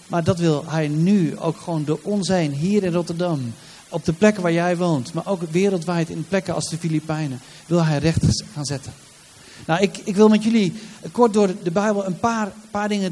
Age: 40-59